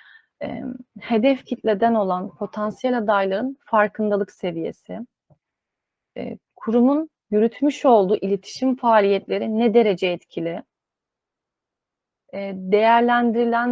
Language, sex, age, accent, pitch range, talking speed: Turkish, female, 30-49, native, 200-240 Hz, 70 wpm